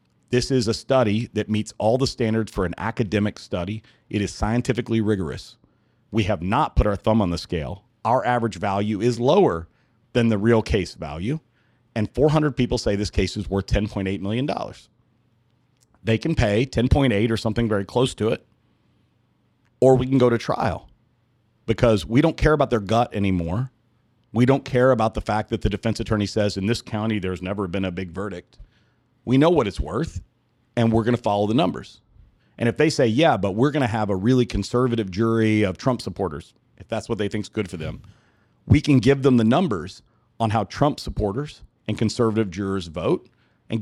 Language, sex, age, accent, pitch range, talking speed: English, male, 40-59, American, 105-125 Hz, 195 wpm